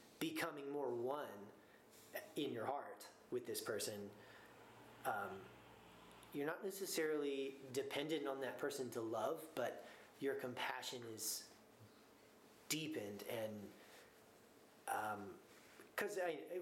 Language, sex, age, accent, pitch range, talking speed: English, male, 30-49, American, 120-170 Hz, 100 wpm